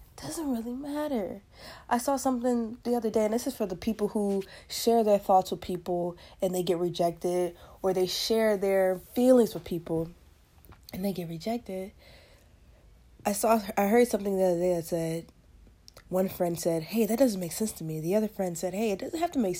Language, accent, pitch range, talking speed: English, American, 160-225 Hz, 200 wpm